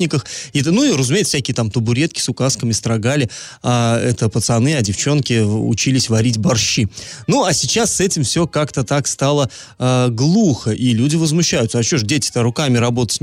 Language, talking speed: Russian, 170 wpm